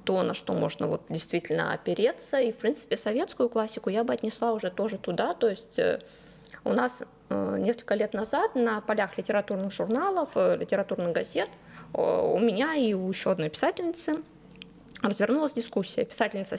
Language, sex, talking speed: Russian, female, 150 wpm